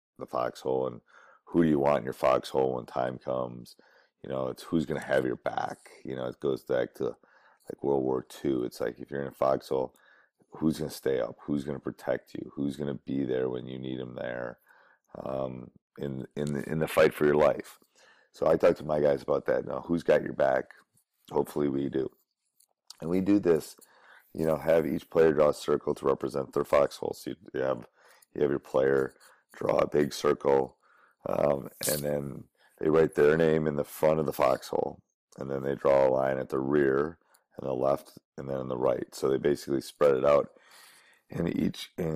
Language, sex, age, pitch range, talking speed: English, male, 30-49, 65-75 Hz, 215 wpm